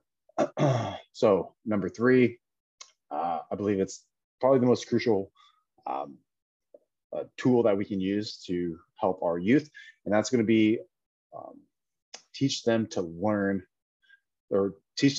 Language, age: English, 30-49